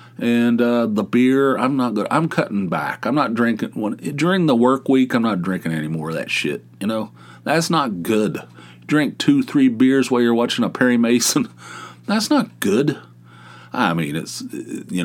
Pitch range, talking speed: 90-125 Hz, 185 wpm